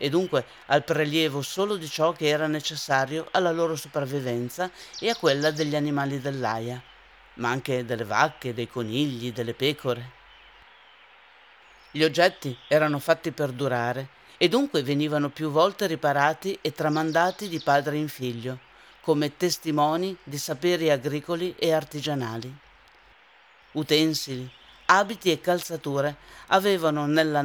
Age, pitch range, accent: 50-69, 130-160 Hz, native